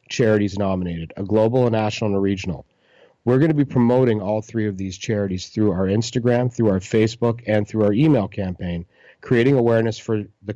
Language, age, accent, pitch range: English, 40-59, American, 100-120 Hz